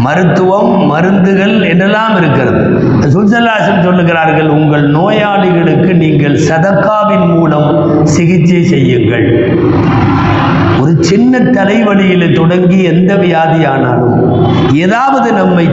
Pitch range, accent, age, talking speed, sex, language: 160-210 Hz, native, 50-69, 75 wpm, male, Tamil